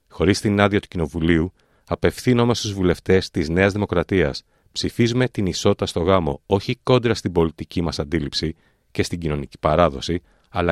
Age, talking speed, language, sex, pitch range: 40-59, 150 wpm, Greek, male, 85-115 Hz